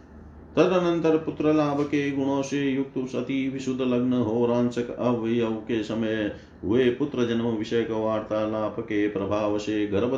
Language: Hindi